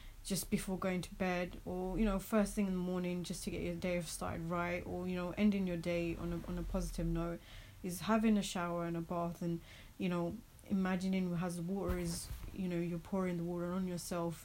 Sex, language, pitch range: female, English, 165-185 Hz